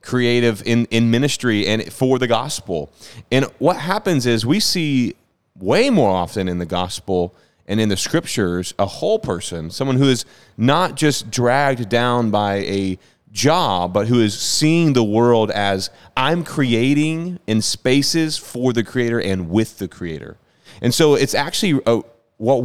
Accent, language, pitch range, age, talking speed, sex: American, English, 100-140 Hz, 30-49, 160 wpm, male